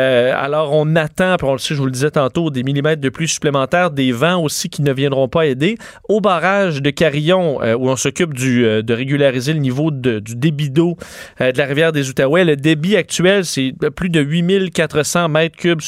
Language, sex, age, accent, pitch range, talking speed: French, male, 30-49, Canadian, 140-175 Hz, 210 wpm